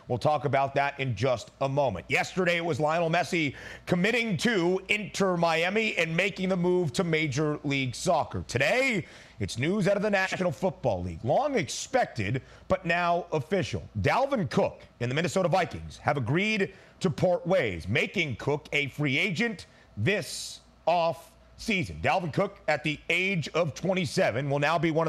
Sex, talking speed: male, 160 wpm